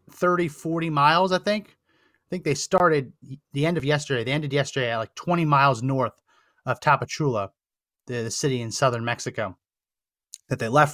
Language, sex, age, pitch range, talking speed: English, male, 30-49, 125-165 Hz, 175 wpm